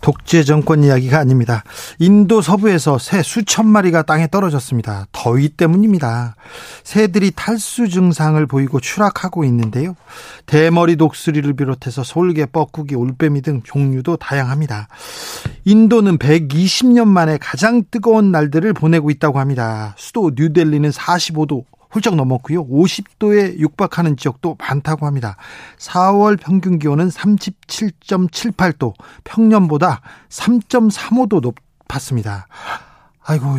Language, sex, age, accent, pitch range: Korean, male, 40-59, native, 140-185 Hz